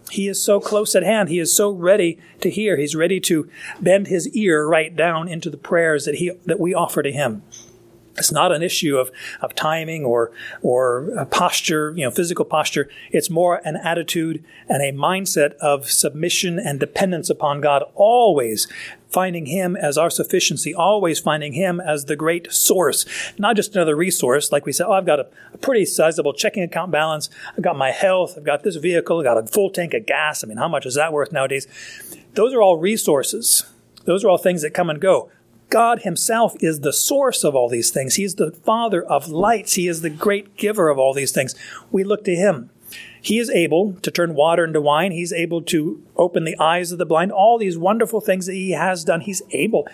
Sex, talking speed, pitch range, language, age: male, 210 wpm, 155-195 Hz, English, 40-59